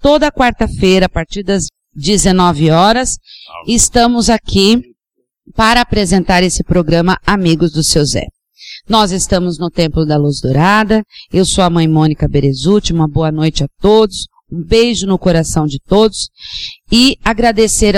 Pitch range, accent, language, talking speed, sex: 160-210 Hz, Brazilian, Portuguese, 145 wpm, female